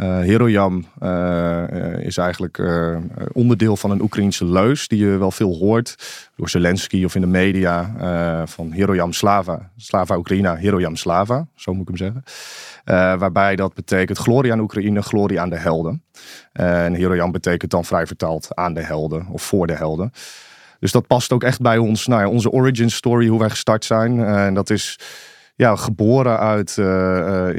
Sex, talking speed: male, 185 wpm